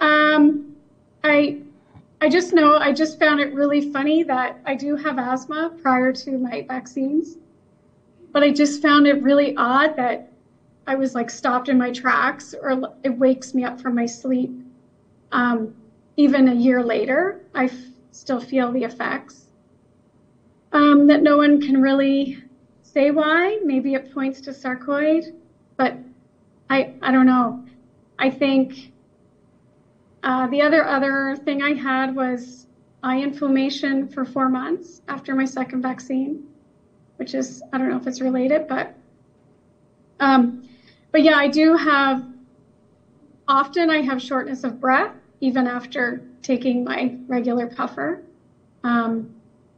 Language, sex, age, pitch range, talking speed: English, female, 30-49, 255-290 Hz, 140 wpm